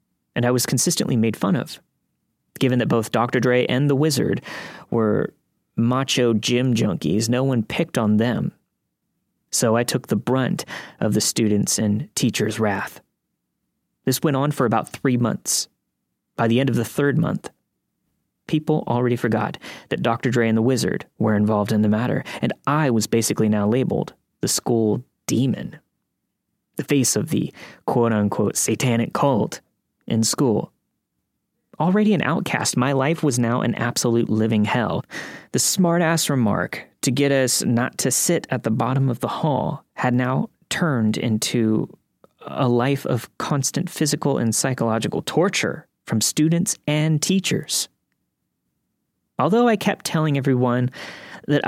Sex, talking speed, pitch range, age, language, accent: male, 150 wpm, 115-145 Hz, 20-39, English, American